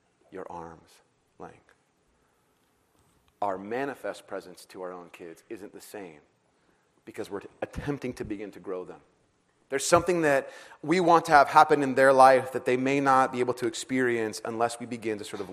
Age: 30-49